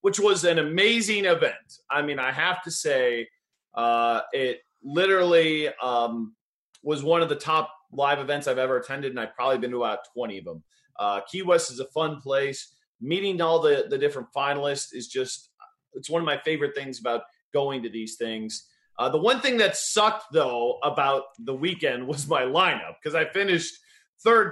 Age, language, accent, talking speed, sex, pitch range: 30-49, English, American, 190 wpm, male, 135-205 Hz